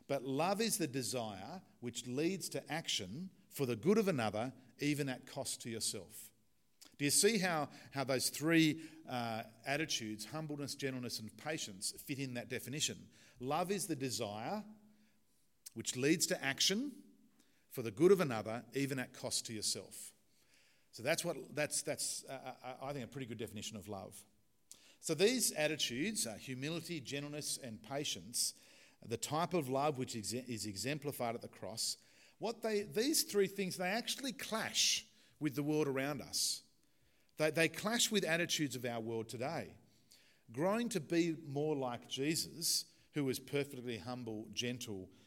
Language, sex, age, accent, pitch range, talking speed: English, male, 50-69, Australian, 120-160 Hz, 155 wpm